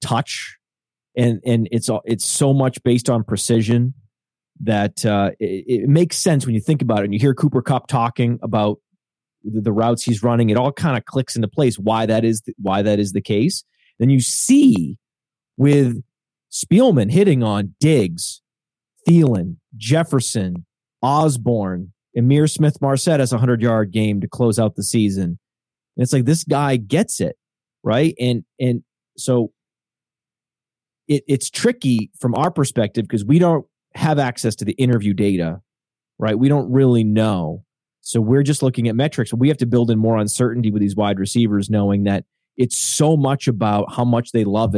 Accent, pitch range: American, 110-140 Hz